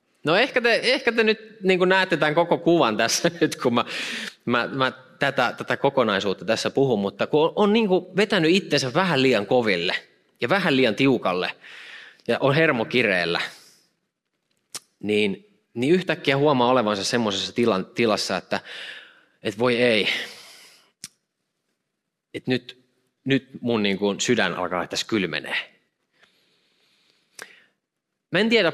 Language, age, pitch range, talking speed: Finnish, 20-39, 115-165 Hz, 135 wpm